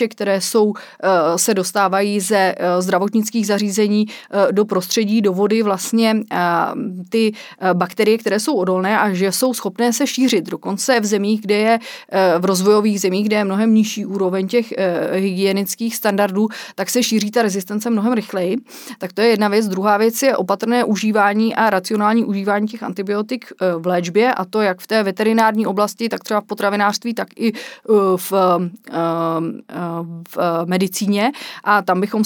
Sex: female